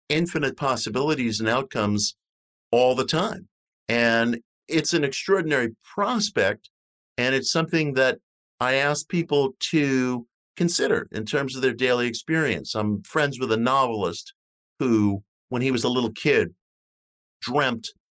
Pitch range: 105-130 Hz